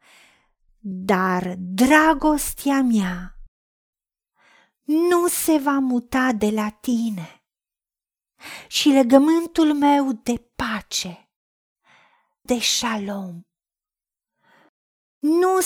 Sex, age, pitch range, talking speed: female, 40-59, 210-285 Hz, 70 wpm